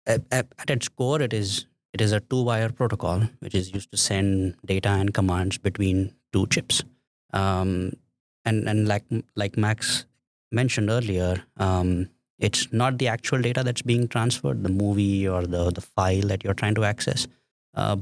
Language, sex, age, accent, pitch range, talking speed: English, male, 20-39, Indian, 95-115 Hz, 165 wpm